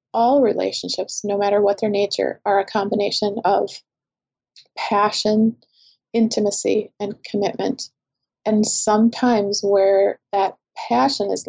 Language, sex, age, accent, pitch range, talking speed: English, female, 30-49, American, 200-220 Hz, 110 wpm